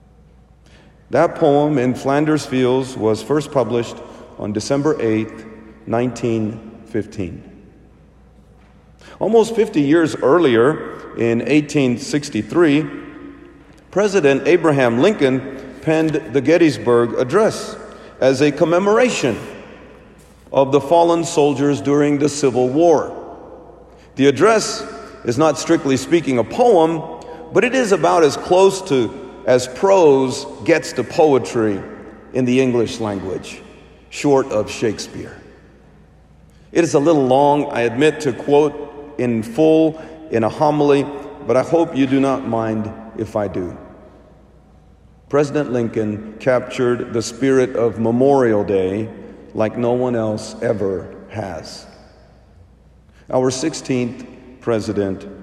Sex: male